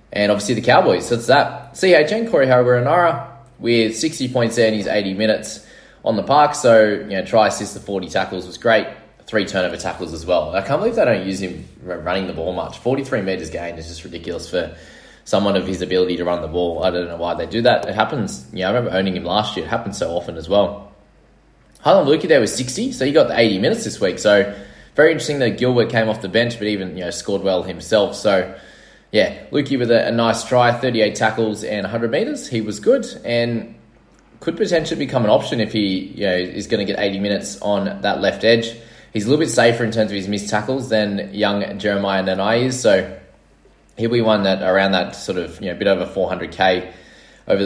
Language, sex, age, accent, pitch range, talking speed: English, male, 20-39, Australian, 95-120 Hz, 230 wpm